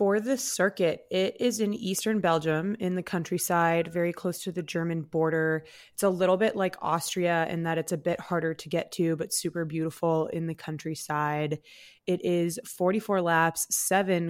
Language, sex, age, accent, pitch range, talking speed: English, female, 20-39, American, 155-180 Hz, 180 wpm